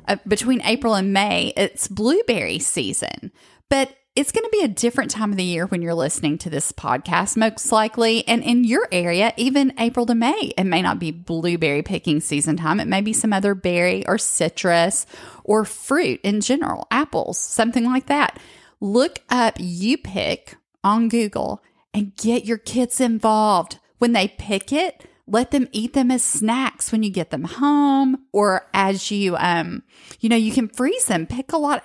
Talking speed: 185 wpm